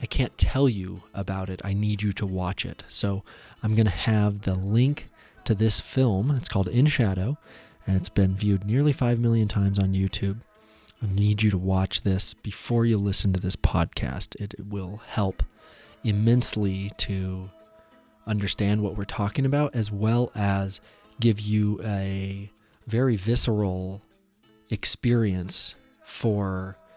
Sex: male